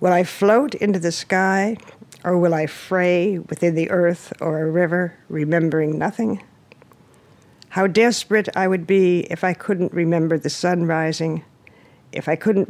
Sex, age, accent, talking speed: female, 60-79, American, 155 wpm